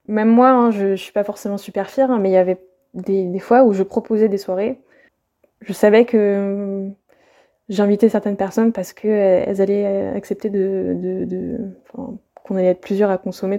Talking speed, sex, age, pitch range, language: 190 wpm, female, 20-39, 200-230 Hz, French